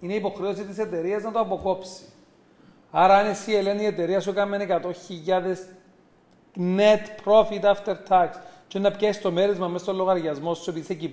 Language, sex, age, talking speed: Greek, male, 40-59, 175 wpm